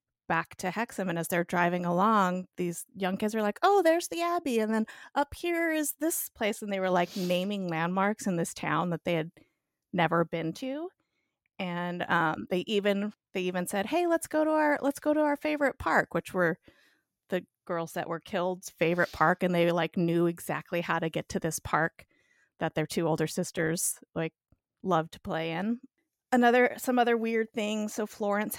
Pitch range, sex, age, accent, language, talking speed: 170-215 Hz, female, 30-49, American, English, 195 wpm